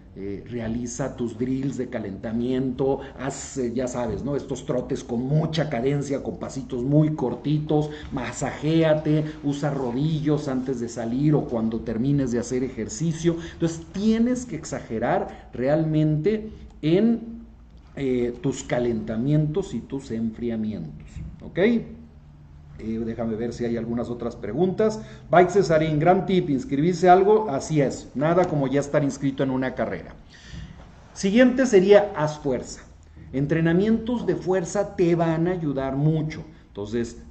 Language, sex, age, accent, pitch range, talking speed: Spanish, male, 40-59, Mexican, 115-165 Hz, 130 wpm